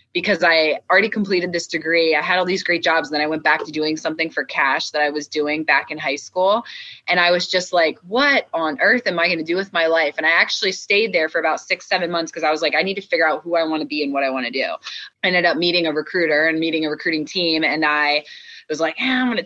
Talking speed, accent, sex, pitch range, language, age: 295 wpm, American, female, 155-190 Hz, English, 20-39